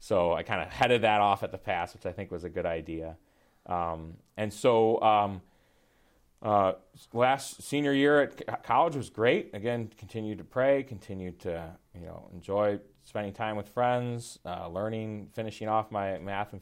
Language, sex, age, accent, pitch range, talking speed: English, male, 30-49, American, 90-110 Hz, 175 wpm